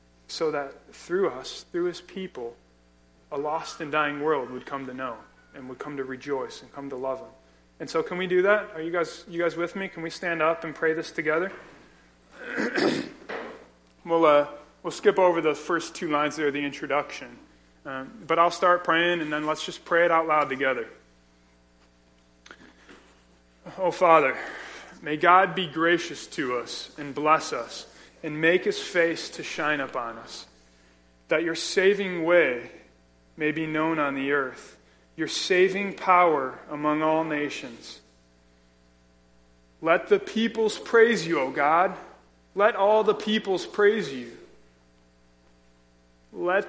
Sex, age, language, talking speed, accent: male, 30-49, English, 155 wpm, American